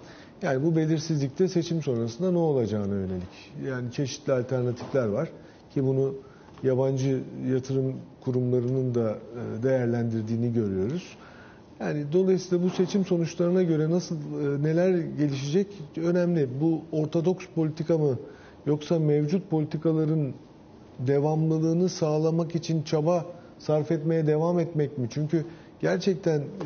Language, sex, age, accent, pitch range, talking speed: Turkish, male, 40-59, native, 125-165 Hz, 110 wpm